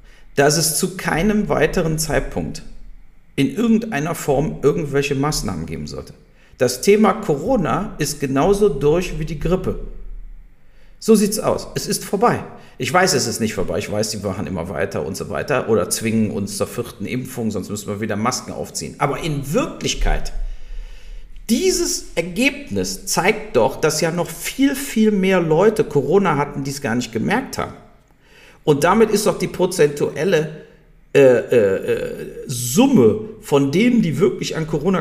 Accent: German